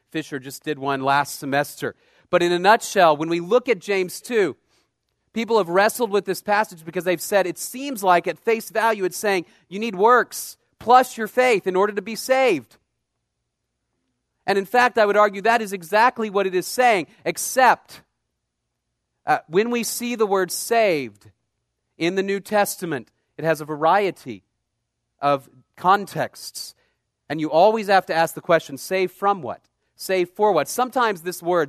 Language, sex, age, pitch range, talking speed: English, male, 40-59, 155-205 Hz, 175 wpm